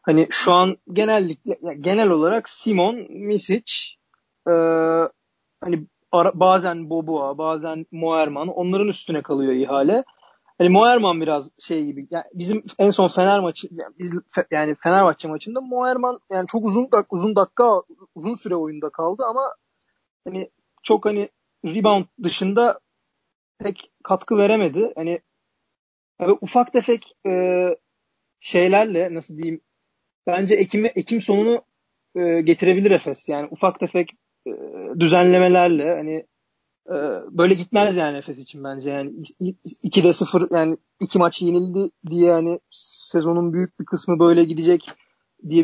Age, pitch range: 40-59, 165-205 Hz